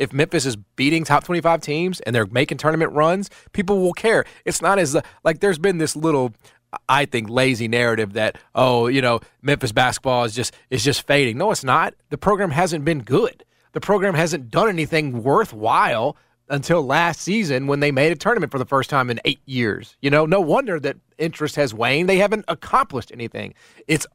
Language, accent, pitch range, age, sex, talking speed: English, American, 130-200 Hz, 30-49, male, 200 wpm